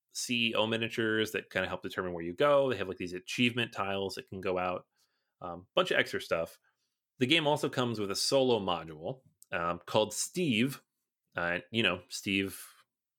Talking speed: 180 wpm